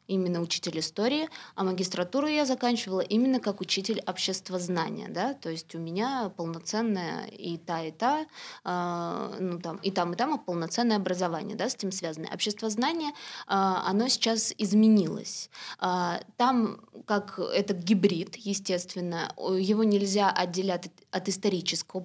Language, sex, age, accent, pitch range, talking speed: Russian, female, 20-39, native, 175-215 Hz, 150 wpm